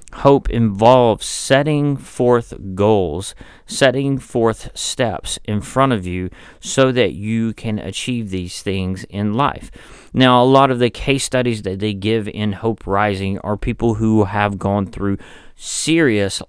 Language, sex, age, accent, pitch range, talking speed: English, male, 40-59, American, 95-125 Hz, 150 wpm